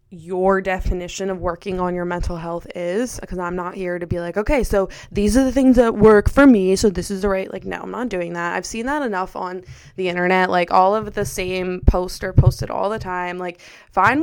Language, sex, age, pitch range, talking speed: English, female, 20-39, 185-230 Hz, 240 wpm